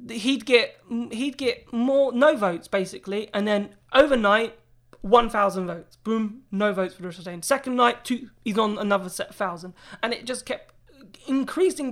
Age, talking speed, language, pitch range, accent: 20-39, 165 wpm, English, 190-245 Hz, British